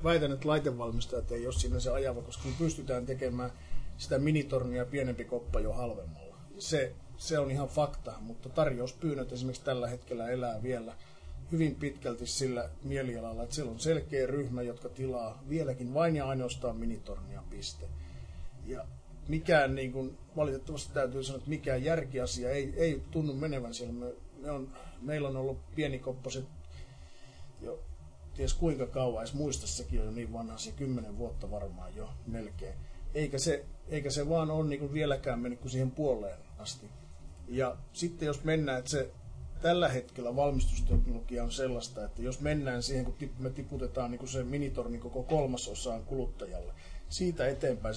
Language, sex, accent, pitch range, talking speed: Finnish, male, native, 115-140 Hz, 155 wpm